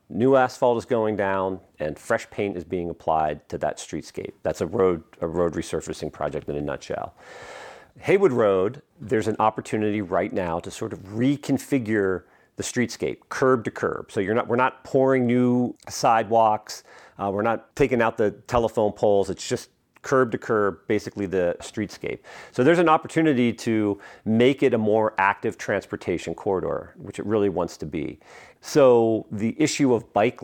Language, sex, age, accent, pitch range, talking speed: English, male, 40-59, American, 95-125 Hz, 170 wpm